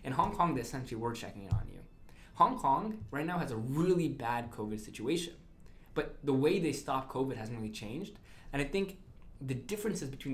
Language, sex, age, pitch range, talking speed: English, male, 20-39, 115-140 Hz, 205 wpm